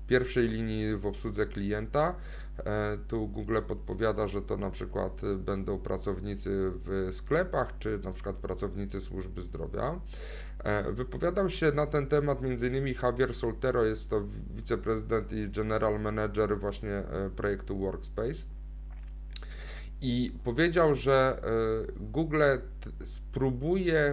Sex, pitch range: male, 105-135 Hz